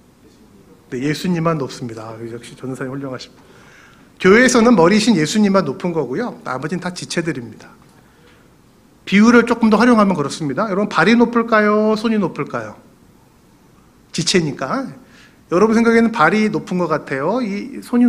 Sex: male